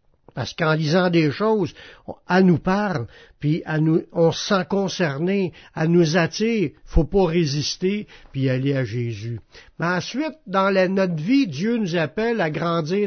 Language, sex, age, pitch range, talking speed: French, male, 60-79, 160-200 Hz, 170 wpm